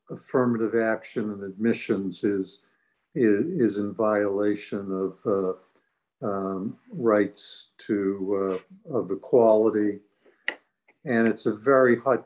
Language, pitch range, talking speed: English, 100-110 Hz, 110 wpm